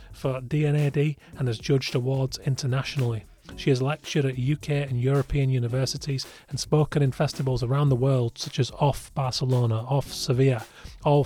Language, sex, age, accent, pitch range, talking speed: English, male, 30-49, British, 120-145 Hz, 155 wpm